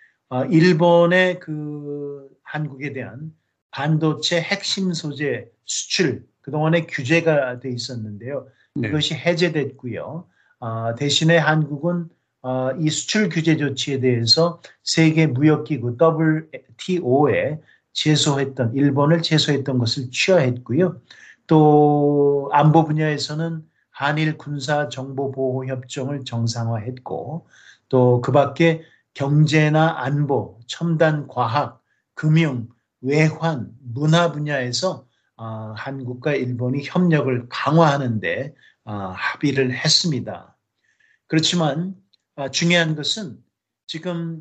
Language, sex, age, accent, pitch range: Korean, male, 40-59, native, 130-160 Hz